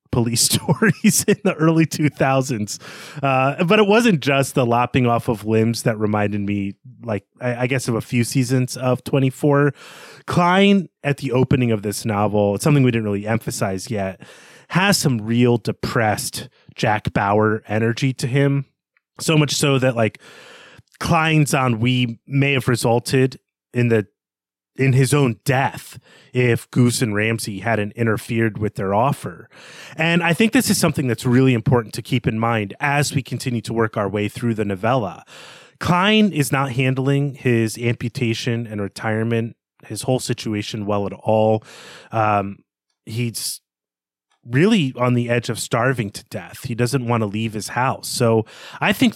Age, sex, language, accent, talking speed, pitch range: 30-49, male, English, American, 165 wpm, 110-140 Hz